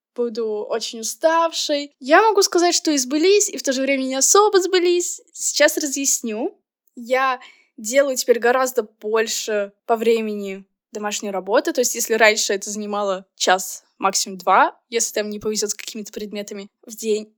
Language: Russian